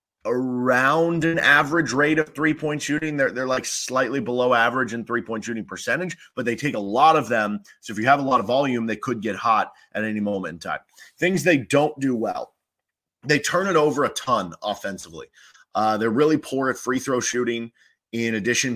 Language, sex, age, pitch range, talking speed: English, male, 30-49, 110-140 Hz, 200 wpm